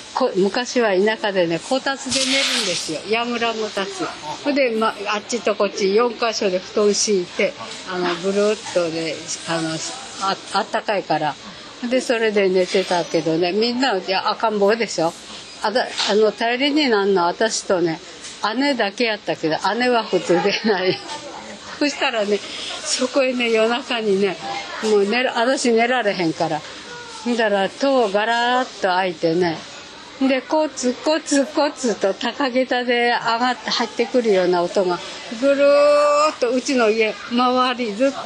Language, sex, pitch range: Japanese, female, 195-260 Hz